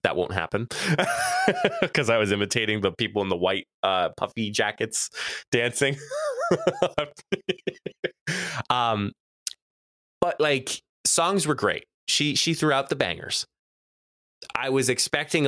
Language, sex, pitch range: English, male, 110-145 Hz